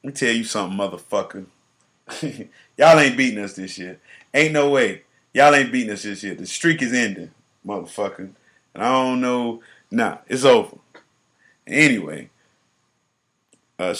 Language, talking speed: English, 150 wpm